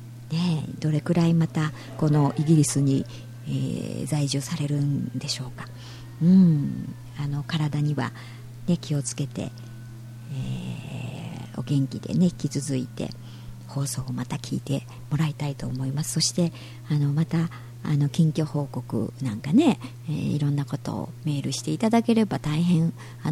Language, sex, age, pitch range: Japanese, male, 50-69, 120-155 Hz